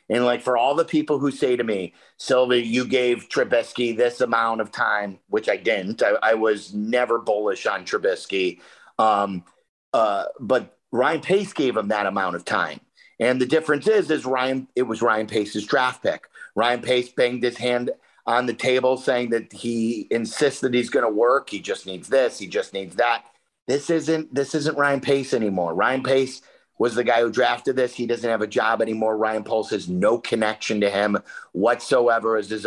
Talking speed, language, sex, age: 195 wpm, English, male, 50-69